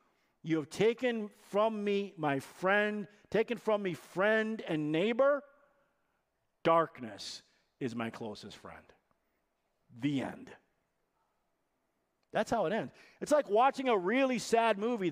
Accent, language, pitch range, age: American, English, 160-255 Hz, 50-69